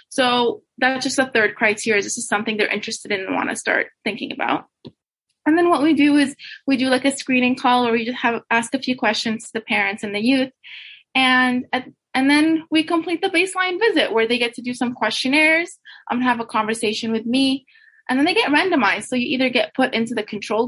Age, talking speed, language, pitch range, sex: 20-39, 225 wpm, English, 225-285 Hz, female